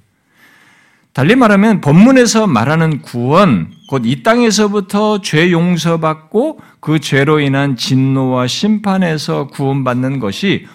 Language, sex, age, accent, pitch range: Korean, male, 50-69, native, 140-215 Hz